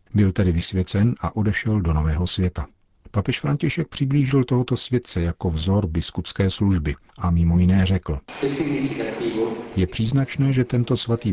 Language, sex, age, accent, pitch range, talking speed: Czech, male, 50-69, native, 90-110 Hz, 140 wpm